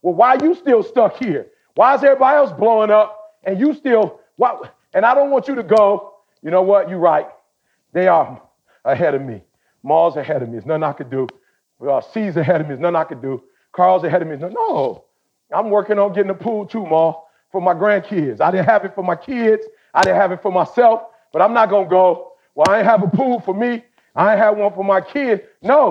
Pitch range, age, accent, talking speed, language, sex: 195-250 Hz, 40-59, American, 240 wpm, English, male